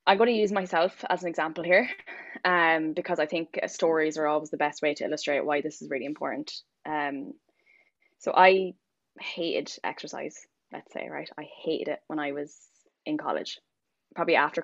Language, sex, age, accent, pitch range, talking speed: English, female, 10-29, Irish, 155-185 Hz, 185 wpm